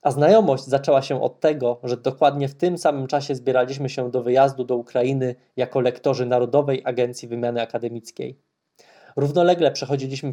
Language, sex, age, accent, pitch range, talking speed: Polish, male, 20-39, native, 125-145 Hz, 150 wpm